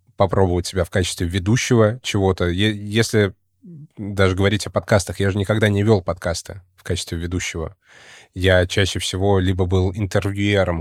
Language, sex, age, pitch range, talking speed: Russian, male, 20-39, 90-110 Hz, 145 wpm